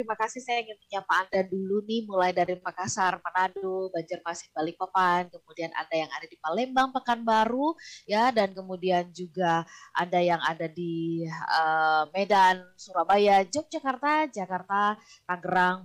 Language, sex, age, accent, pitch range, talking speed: Indonesian, female, 20-39, native, 175-215 Hz, 135 wpm